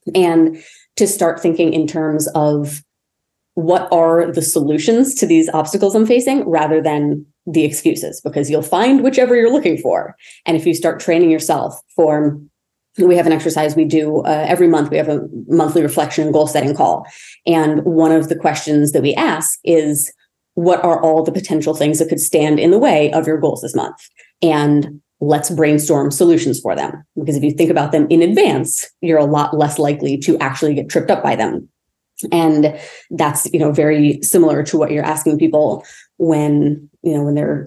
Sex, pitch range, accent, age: female, 150-170 Hz, American, 30-49